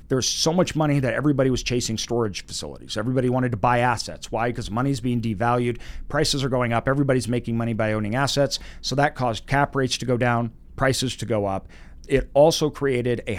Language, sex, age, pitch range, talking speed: English, male, 40-59, 110-135 Hz, 205 wpm